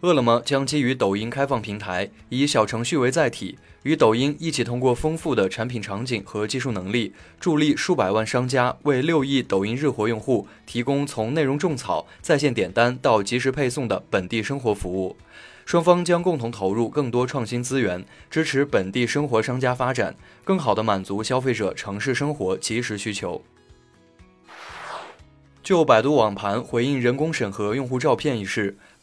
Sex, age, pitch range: male, 20-39, 105-135 Hz